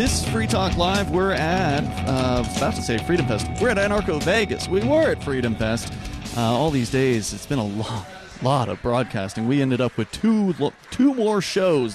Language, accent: English, American